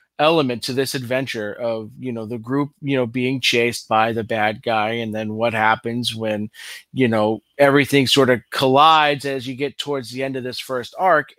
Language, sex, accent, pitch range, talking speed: English, male, American, 120-145 Hz, 200 wpm